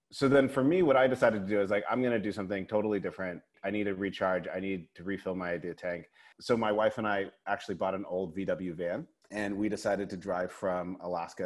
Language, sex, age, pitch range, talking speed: English, male, 30-49, 90-110 Hz, 245 wpm